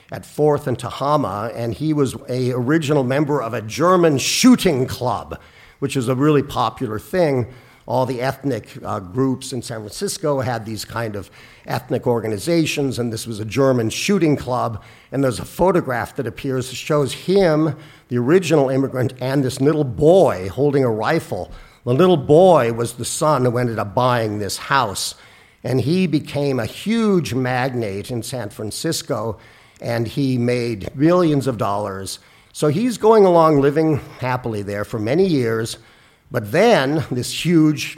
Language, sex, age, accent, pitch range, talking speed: English, male, 50-69, American, 115-145 Hz, 160 wpm